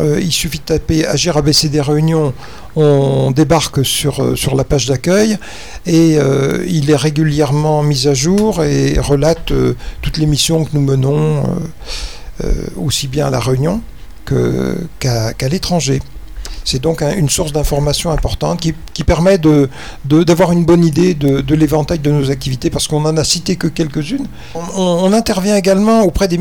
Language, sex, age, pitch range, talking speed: French, male, 50-69, 145-170 Hz, 175 wpm